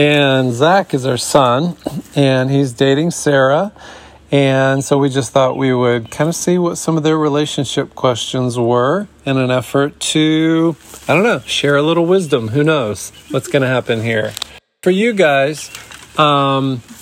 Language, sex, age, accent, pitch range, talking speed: English, male, 40-59, American, 120-145 Hz, 170 wpm